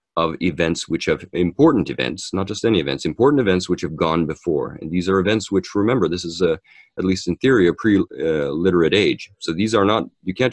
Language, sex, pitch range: English, male, 80-95 Hz